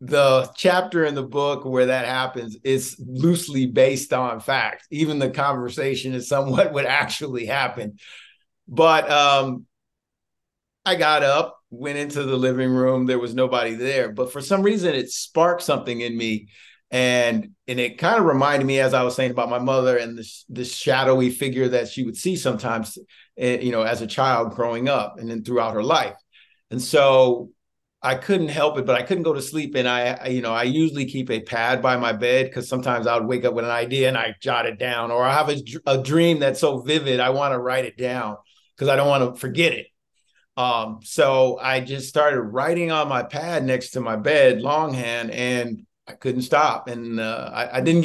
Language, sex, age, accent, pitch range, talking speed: English, male, 50-69, American, 120-140 Hz, 205 wpm